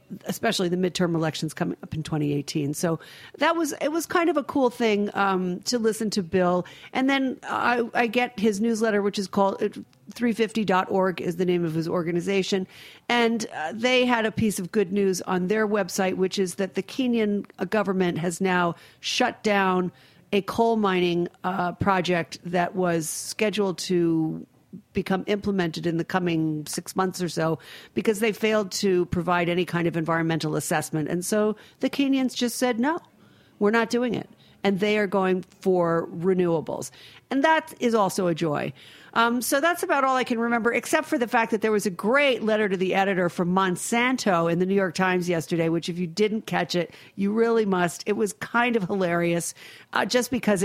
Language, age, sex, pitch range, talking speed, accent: English, 50-69, female, 175-230 Hz, 190 wpm, American